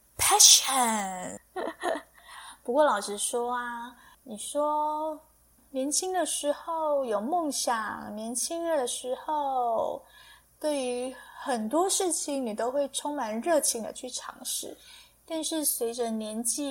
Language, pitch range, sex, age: Chinese, 225-310 Hz, female, 20-39